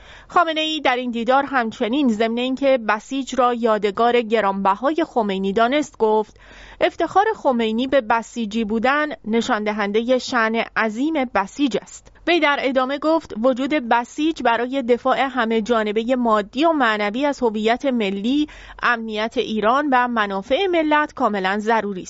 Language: English